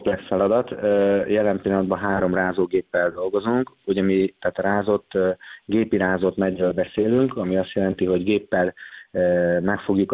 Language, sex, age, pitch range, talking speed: Hungarian, male, 30-49, 90-105 Hz, 120 wpm